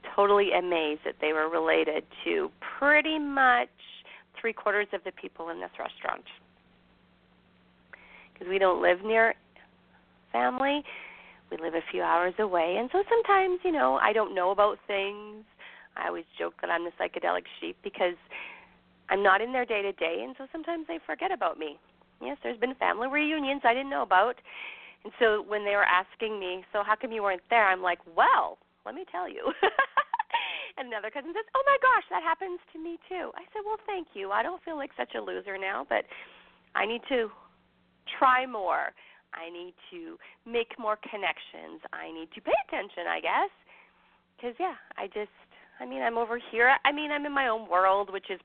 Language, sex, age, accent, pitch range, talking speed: English, female, 40-59, American, 180-290 Hz, 185 wpm